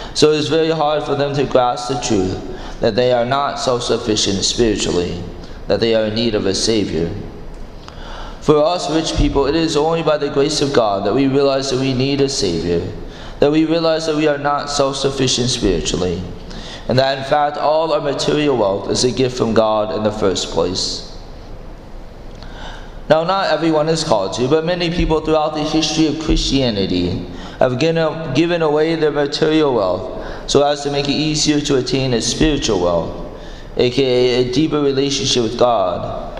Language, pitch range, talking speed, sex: English, 100-150 Hz, 180 wpm, male